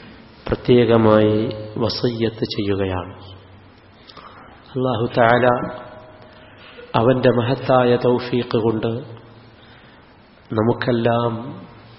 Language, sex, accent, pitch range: Malayalam, male, native, 115-130 Hz